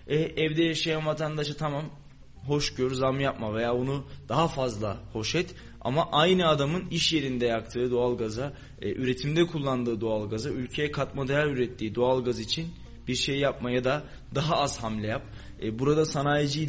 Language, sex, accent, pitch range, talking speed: Turkish, male, native, 125-150 Hz, 155 wpm